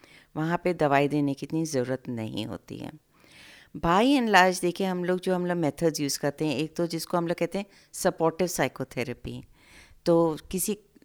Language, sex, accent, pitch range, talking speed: Hindi, female, native, 140-175 Hz, 180 wpm